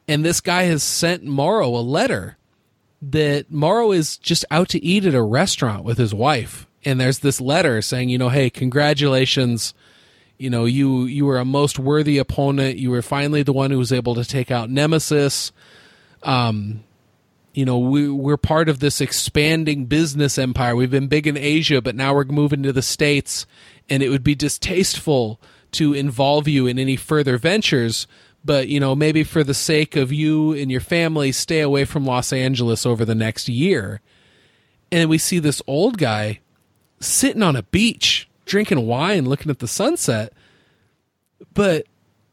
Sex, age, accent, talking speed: male, 30-49, American, 175 wpm